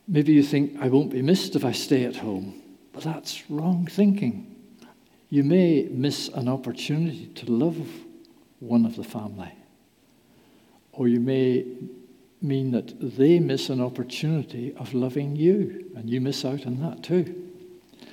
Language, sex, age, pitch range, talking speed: English, male, 60-79, 130-180 Hz, 150 wpm